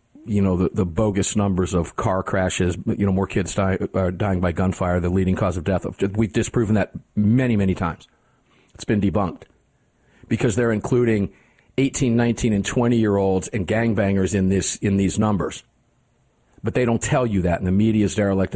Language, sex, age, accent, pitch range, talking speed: English, male, 50-69, American, 95-115 Hz, 190 wpm